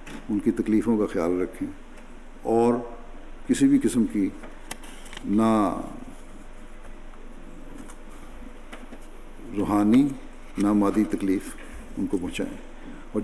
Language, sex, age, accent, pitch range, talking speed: English, male, 50-69, Indian, 105-125 Hz, 80 wpm